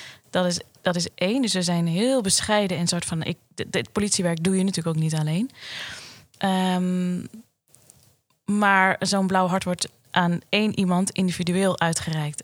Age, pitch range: 20-39, 165-195 Hz